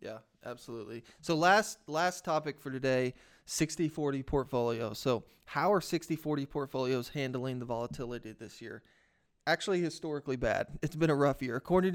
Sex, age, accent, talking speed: male, 30-49, American, 145 wpm